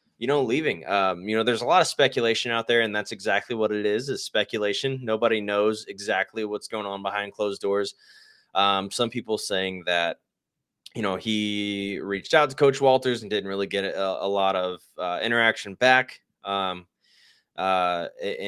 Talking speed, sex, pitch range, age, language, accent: 180 wpm, male, 100-115 Hz, 20-39, English, American